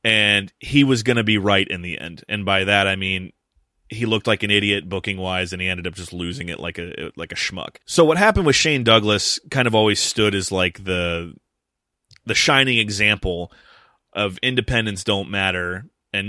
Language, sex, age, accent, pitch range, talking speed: English, male, 30-49, American, 95-115 Hz, 205 wpm